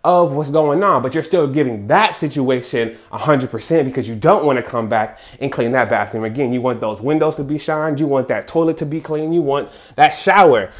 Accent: American